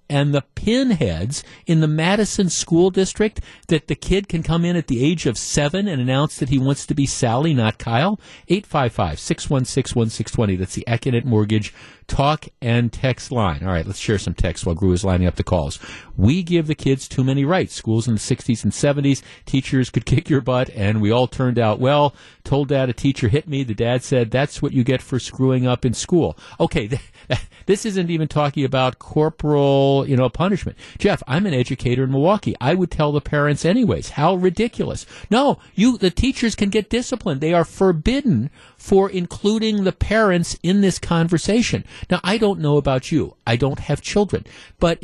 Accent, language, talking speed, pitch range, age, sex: American, English, 195 wpm, 125-170 Hz, 50-69, male